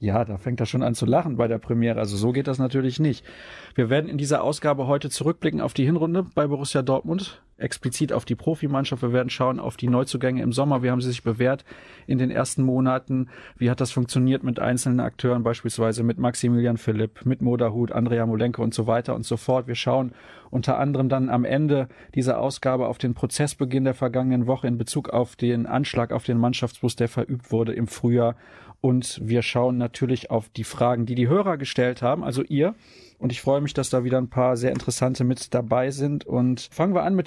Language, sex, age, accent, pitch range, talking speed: German, male, 30-49, German, 120-145 Hz, 215 wpm